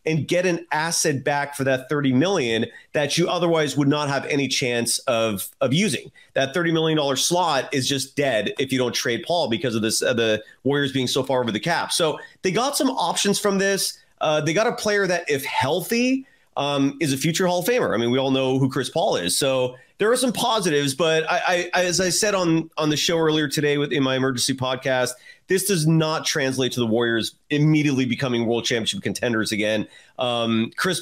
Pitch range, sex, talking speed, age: 135-185 Hz, male, 215 wpm, 30-49